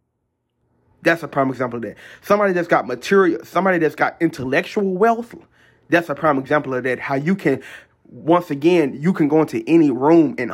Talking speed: 190 wpm